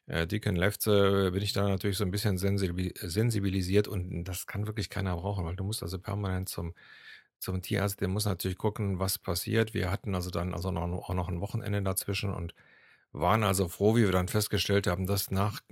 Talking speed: 200 wpm